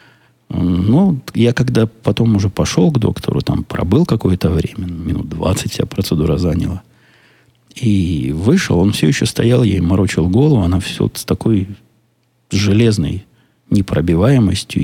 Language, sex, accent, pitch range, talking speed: Russian, male, native, 95-125 Hz, 140 wpm